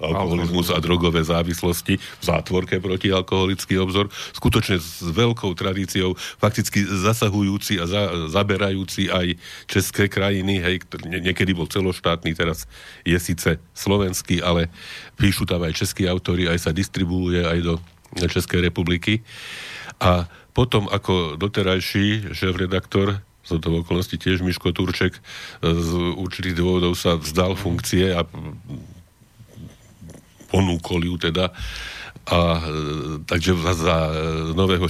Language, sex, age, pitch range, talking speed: Slovak, male, 40-59, 85-95 Hz, 115 wpm